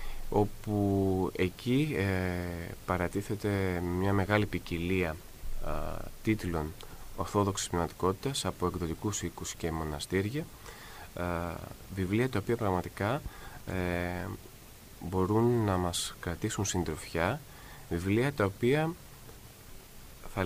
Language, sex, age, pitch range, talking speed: Greek, male, 30-49, 85-105 Hz, 80 wpm